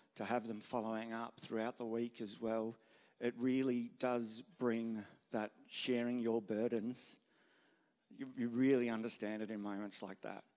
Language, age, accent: English, 40-59, Australian